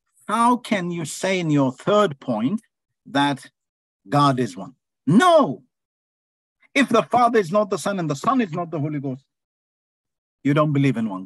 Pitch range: 130-190 Hz